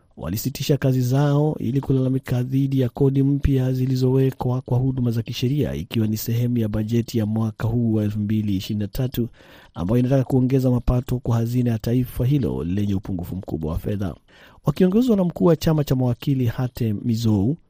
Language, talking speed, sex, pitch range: Swahili, 155 wpm, male, 110-135 Hz